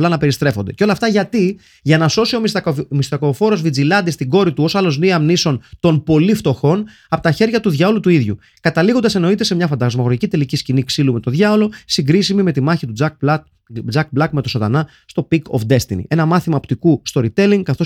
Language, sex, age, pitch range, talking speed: Greek, male, 30-49, 130-175 Hz, 210 wpm